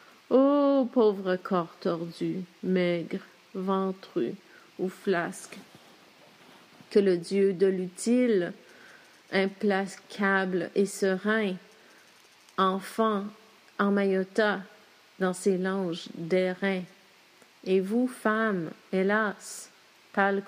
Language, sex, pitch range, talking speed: English, female, 185-205 Hz, 85 wpm